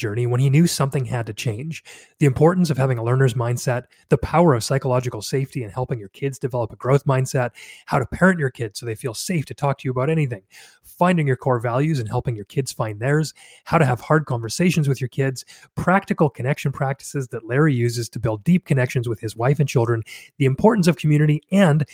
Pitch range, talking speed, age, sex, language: 120-150 Hz, 220 wpm, 30-49, male, English